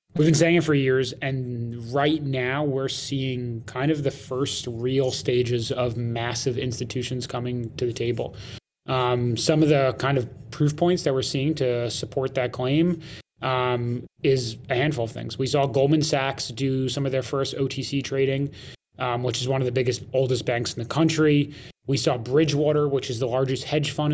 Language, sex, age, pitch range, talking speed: English, male, 20-39, 125-145 Hz, 190 wpm